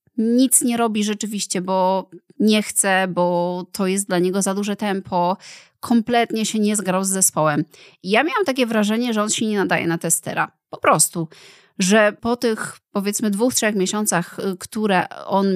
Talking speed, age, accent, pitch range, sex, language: 165 wpm, 20-39, native, 185-235 Hz, female, Polish